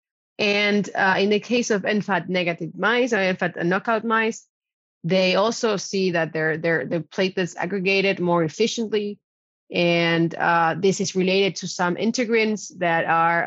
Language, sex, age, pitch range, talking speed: English, female, 30-49, 170-205 Hz, 145 wpm